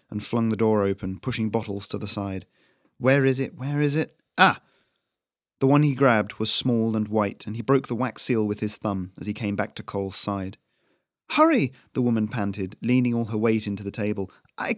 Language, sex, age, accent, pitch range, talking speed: English, male, 30-49, British, 105-125 Hz, 215 wpm